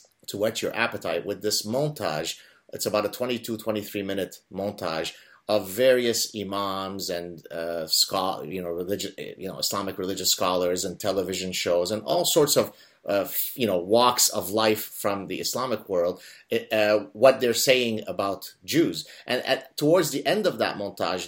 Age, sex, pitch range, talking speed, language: 30-49, male, 95-125 Hz, 165 wpm, English